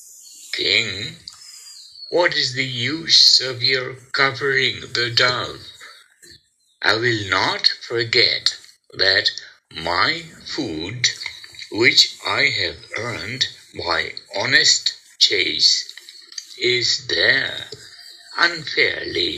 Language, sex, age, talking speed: English, male, 60-79, 85 wpm